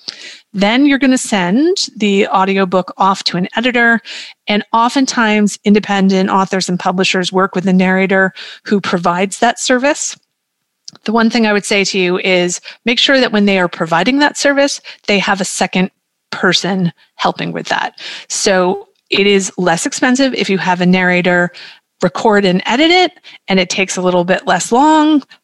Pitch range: 185-230 Hz